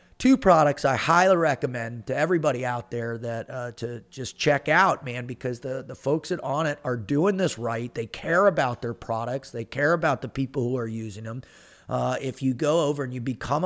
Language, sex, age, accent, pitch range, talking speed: English, male, 30-49, American, 125-160 Hz, 210 wpm